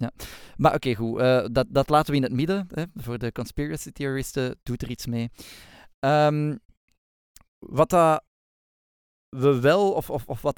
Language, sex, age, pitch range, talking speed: Dutch, male, 20-39, 120-155 Hz, 125 wpm